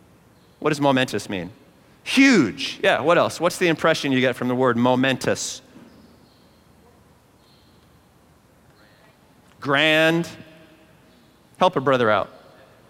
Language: English